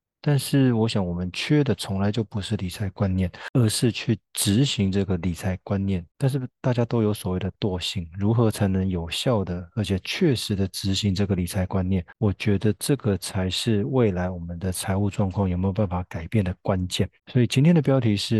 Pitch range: 95-110 Hz